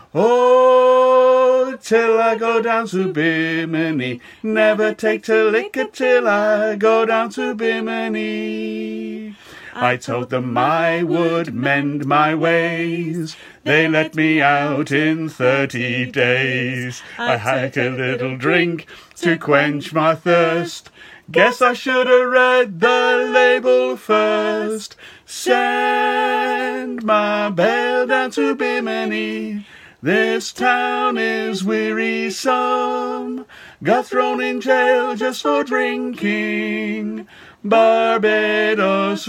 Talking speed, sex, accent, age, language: 100 wpm, male, British, 60-79, French